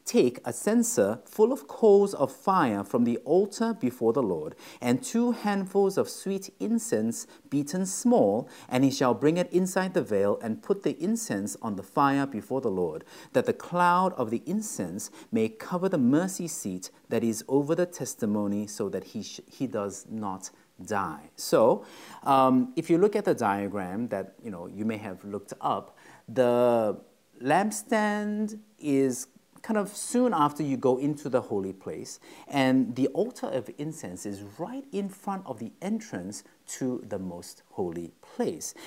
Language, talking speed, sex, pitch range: English, 170 wpm, male, 125-215 Hz